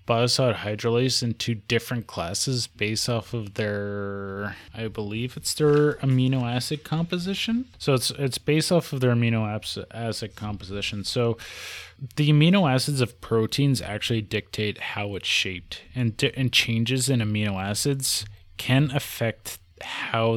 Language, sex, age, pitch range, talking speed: English, male, 20-39, 100-125 Hz, 135 wpm